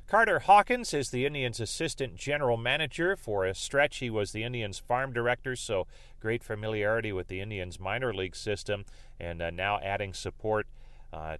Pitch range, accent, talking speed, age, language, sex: 95-125 Hz, American, 170 wpm, 40-59, English, male